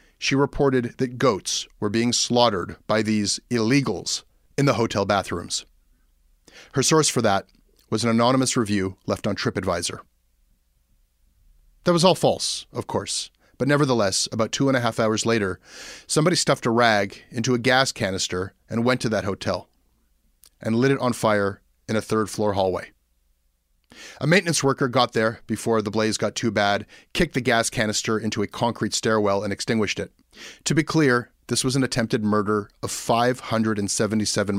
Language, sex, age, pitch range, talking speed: English, male, 30-49, 100-130 Hz, 165 wpm